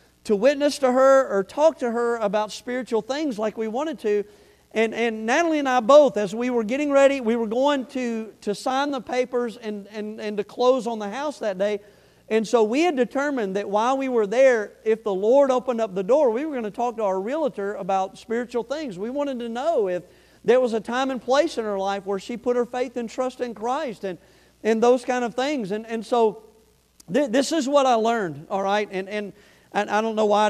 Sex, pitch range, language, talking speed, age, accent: male, 205-260 Hz, English, 235 wpm, 40-59, American